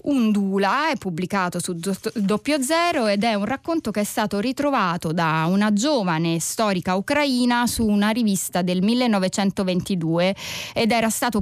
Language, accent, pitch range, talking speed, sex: Italian, native, 185-235 Hz, 145 wpm, female